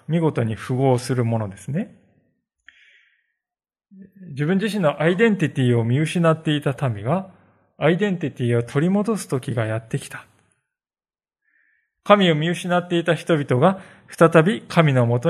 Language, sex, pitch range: Japanese, male, 125-185 Hz